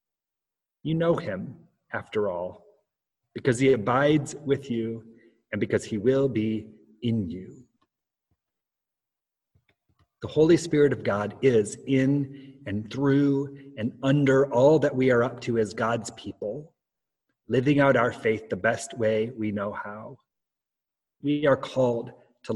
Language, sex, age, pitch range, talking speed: English, male, 30-49, 115-135 Hz, 135 wpm